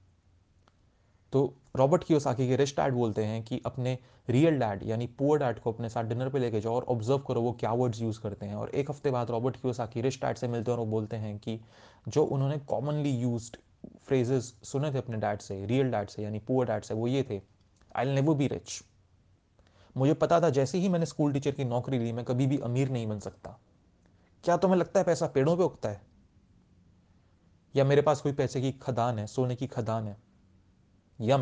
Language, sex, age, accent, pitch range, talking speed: Hindi, male, 30-49, native, 100-135 Hz, 215 wpm